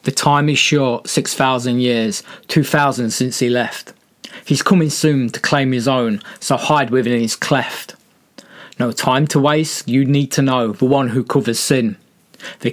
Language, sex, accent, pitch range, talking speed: English, male, British, 120-140 Hz, 170 wpm